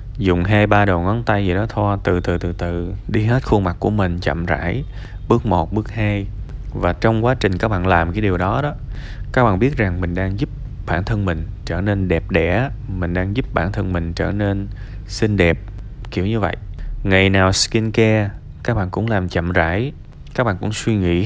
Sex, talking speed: male, 215 wpm